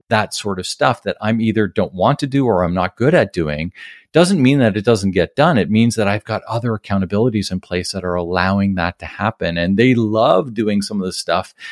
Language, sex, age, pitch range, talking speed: English, male, 40-59, 90-115 Hz, 240 wpm